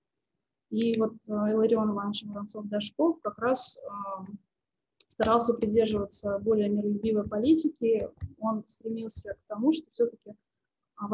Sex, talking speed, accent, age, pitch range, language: female, 110 wpm, native, 20-39, 210-245 Hz, Russian